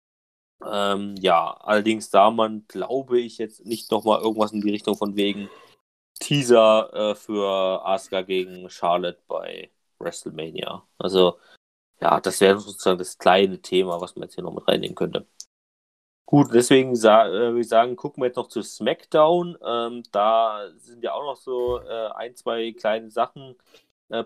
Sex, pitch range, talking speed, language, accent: male, 105-130 Hz, 165 wpm, German, German